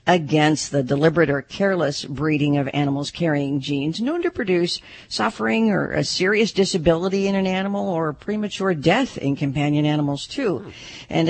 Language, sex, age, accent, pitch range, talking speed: English, female, 50-69, American, 140-190 Hz, 155 wpm